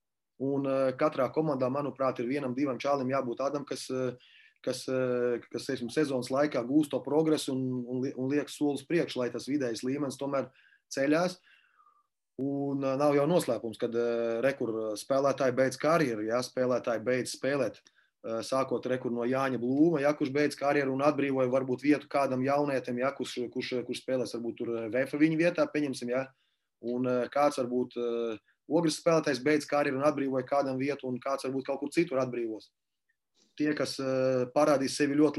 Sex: male